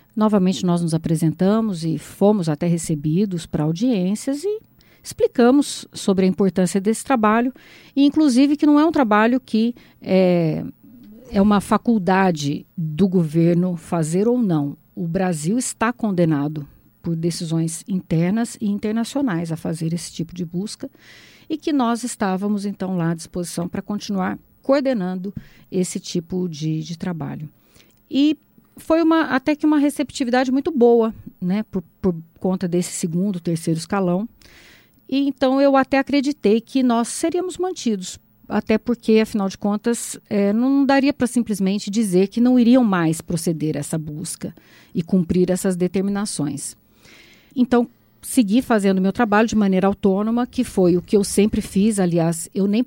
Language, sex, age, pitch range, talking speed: Portuguese, female, 50-69, 175-240 Hz, 150 wpm